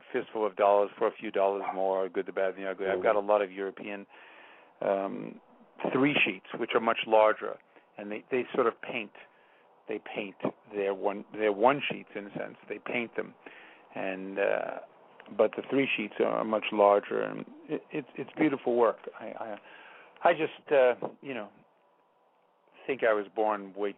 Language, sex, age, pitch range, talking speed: English, male, 50-69, 100-110 Hz, 185 wpm